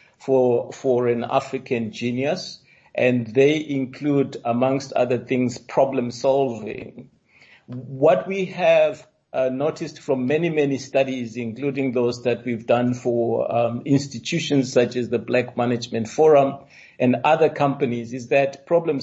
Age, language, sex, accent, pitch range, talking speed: 50-69, English, male, South African, 120-140 Hz, 130 wpm